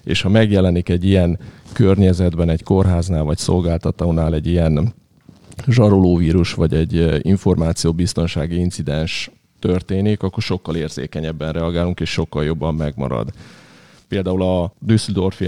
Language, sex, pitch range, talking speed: Hungarian, male, 85-95 Hz, 115 wpm